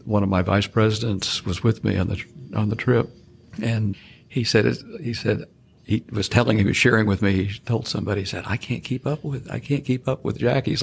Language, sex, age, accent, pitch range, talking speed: English, male, 60-79, American, 100-125 Hz, 240 wpm